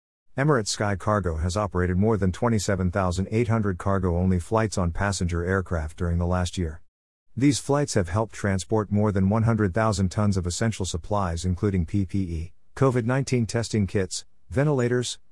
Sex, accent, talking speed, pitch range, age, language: male, American, 135 wpm, 90-110 Hz, 50-69, English